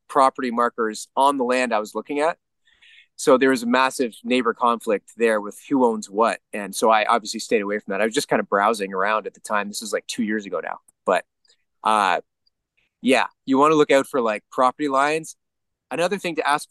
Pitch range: 115-150 Hz